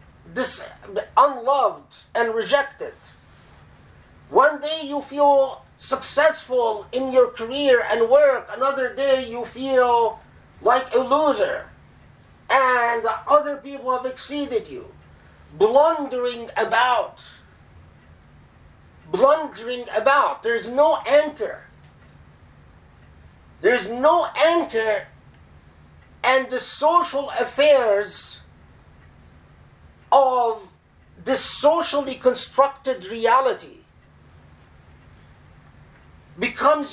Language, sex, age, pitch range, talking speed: English, male, 50-69, 235-290 Hz, 75 wpm